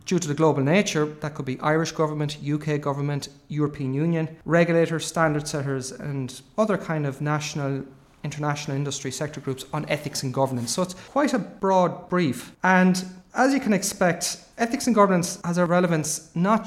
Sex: male